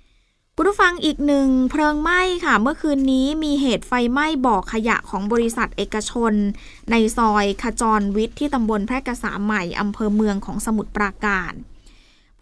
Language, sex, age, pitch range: Thai, female, 20-39, 210-275 Hz